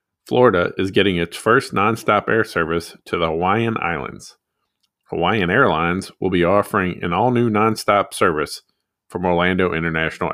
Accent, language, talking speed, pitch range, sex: American, English, 140 wpm, 85-105 Hz, male